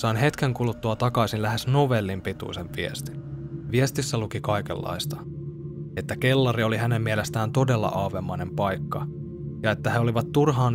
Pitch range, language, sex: 110-150 Hz, Finnish, male